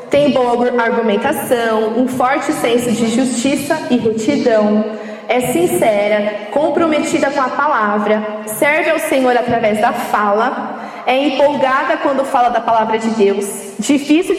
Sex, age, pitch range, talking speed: female, 20-39, 225-290 Hz, 130 wpm